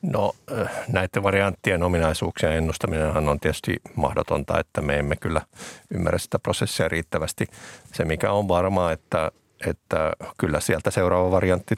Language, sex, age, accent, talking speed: Finnish, male, 50-69, native, 130 wpm